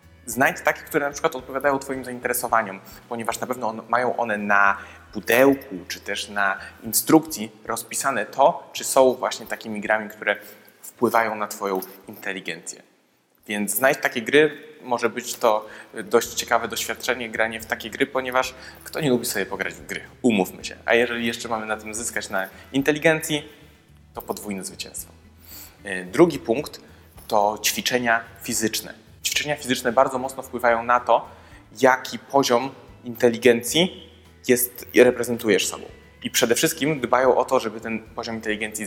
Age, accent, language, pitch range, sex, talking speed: 20-39, native, Polish, 105-130 Hz, male, 145 wpm